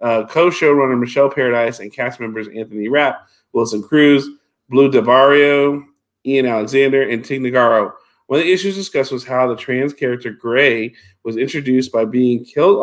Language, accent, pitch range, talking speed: English, American, 115-135 Hz, 160 wpm